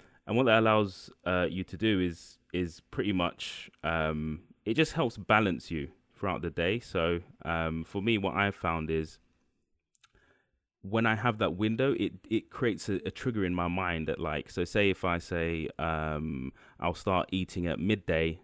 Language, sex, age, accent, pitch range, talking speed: English, male, 20-39, British, 80-100 Hz, 180 wpm